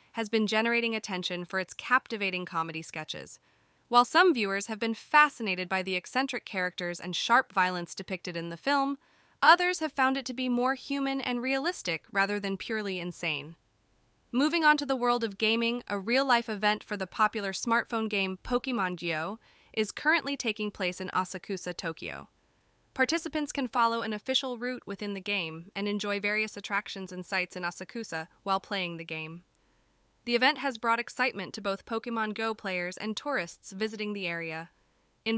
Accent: American